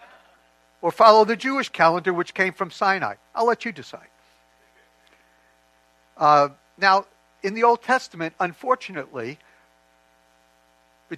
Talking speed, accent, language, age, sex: 115 wpm, American, English, 60-79, male